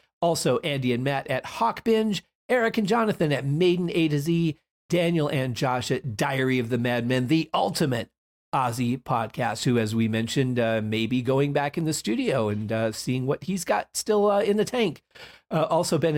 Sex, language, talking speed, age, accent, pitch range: male, English, 200 wpm, 40-59, American, 140-195 Hz